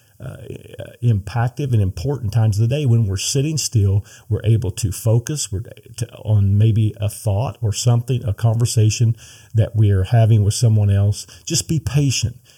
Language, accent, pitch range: English, American, 105-120 Hz